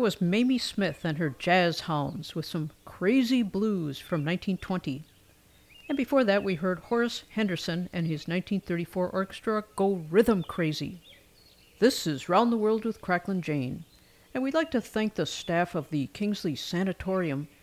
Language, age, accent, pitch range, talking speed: English, 50-69, American, 165-220 Hz, 155 wpm